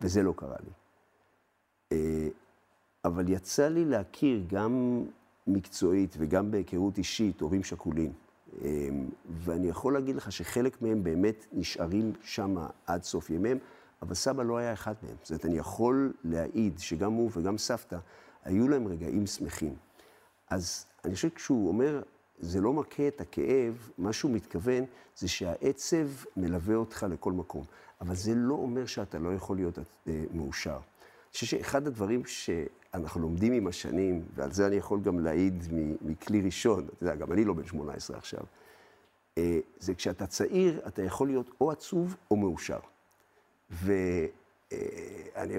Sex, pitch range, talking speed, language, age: male, 90-130 Hz, 145 wpm, Hebrew, 50-69